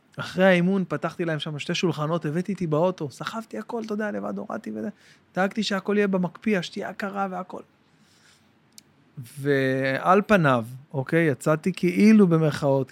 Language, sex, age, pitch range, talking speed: Hebrew, male, 30-49, 155-210 Hz, 140 wpm